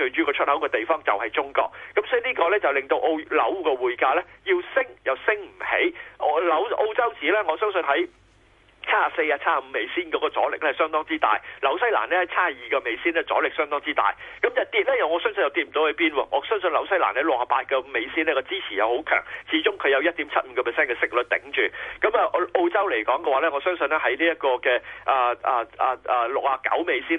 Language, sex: Chinese, male